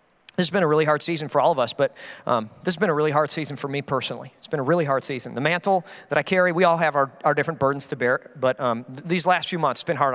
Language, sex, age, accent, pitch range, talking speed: English, male, 30-49, American, 170-280 Hz, 305 wpm